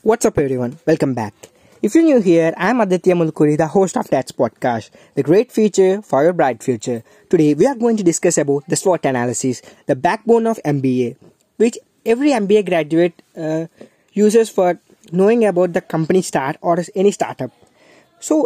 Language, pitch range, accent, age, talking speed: English, 155-205 Hz, Indian, 20-39, 175 wpm